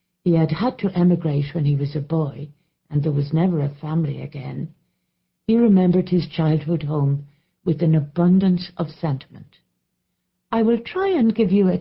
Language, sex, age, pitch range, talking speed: English, female, 60-79, 145-185 Hz, 175 wpm